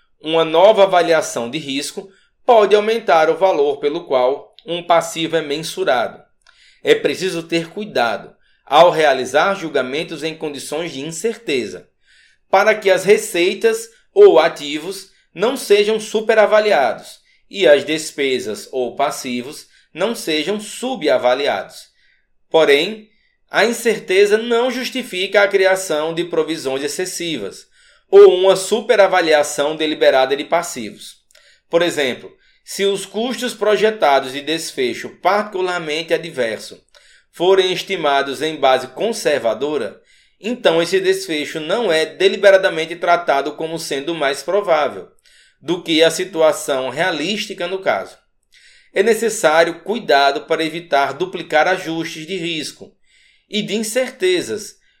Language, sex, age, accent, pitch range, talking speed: Portuguese, male, 20-39, Brazilian, 160-215 Hz, 115 wpm